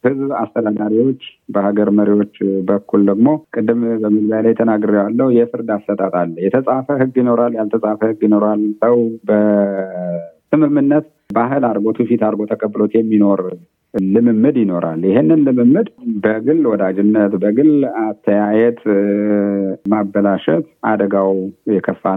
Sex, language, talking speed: male, Amharic, 105 wpm